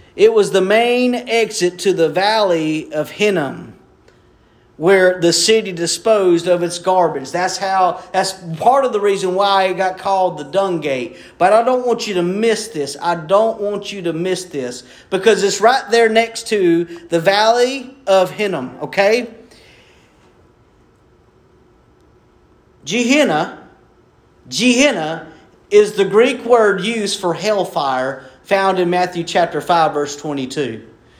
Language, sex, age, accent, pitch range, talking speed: English, male, 40-59, American, 175-230 Hz, 140 wpm